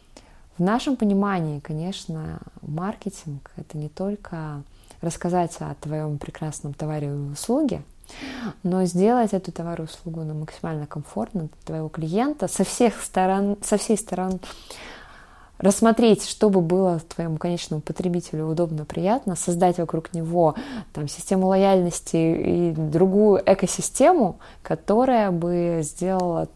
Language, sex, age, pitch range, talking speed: Russian, female, 20-39, 170-205 Hz, 120 wpm